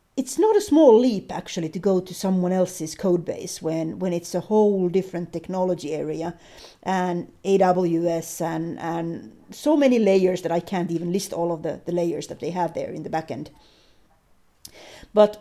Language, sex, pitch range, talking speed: Swedish, female, 175-215 Hz, 180 wpm